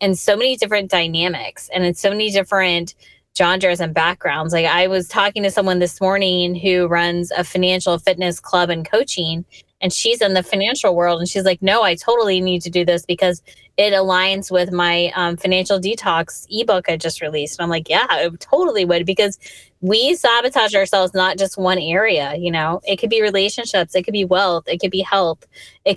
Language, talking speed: English, 200 wpm